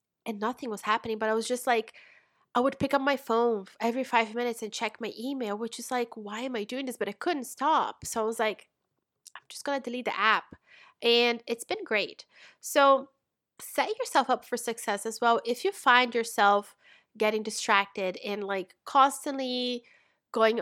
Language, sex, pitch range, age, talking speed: English, female, 215-265 Hz, 20-39, 195 wpm